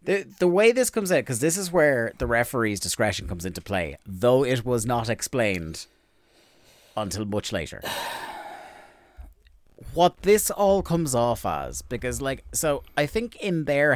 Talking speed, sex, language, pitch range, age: 160 wpm, male, English, 95-130 Hz, 30-49